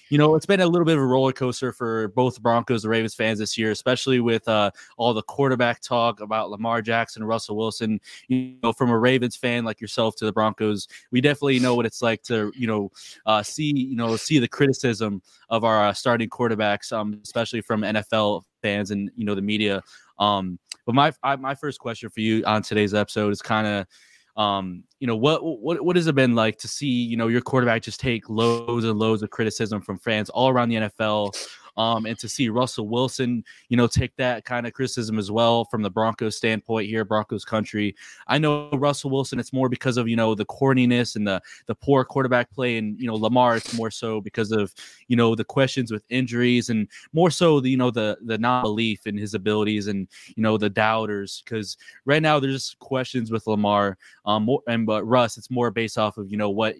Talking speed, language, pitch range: 215 wpm, English, 110-125 Hz